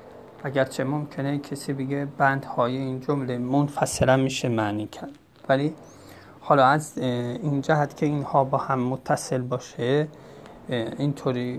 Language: Persian